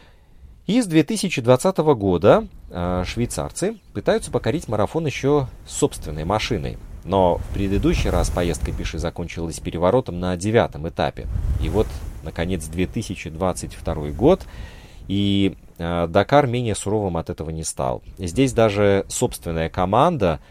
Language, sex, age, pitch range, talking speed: Russian, male, 30-49, 85-115 Hz, 115 wpm